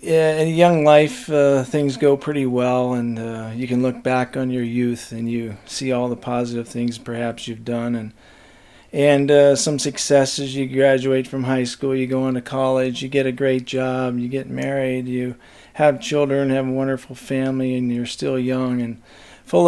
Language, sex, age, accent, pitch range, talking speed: English, male, 40-59, American, 120-135 Hz, 190 wpm